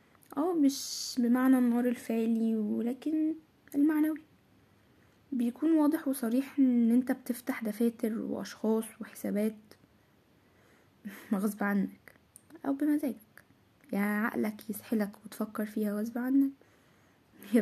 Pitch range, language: 215-250 Hz, Arabic